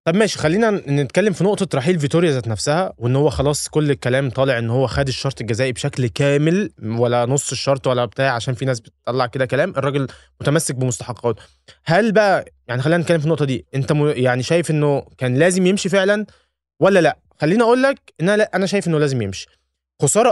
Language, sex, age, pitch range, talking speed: Arabic, male, 20-39, 125-190 Hz, 200 wpm